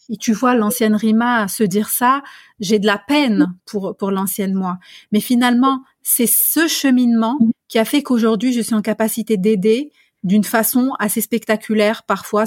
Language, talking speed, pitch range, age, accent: French, 170 wpm, 210-270 Hz, 30-49, French